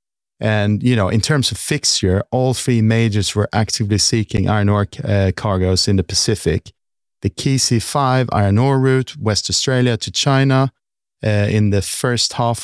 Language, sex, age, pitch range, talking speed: English, male, 40-59, 100-120 Hz, 165 wpm